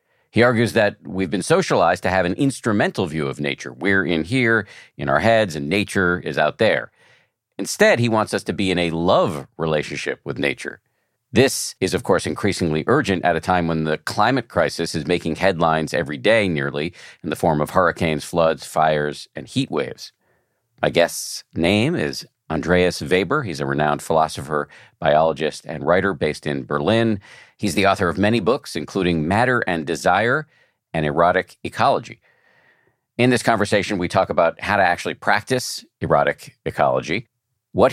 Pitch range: 80-115 Hz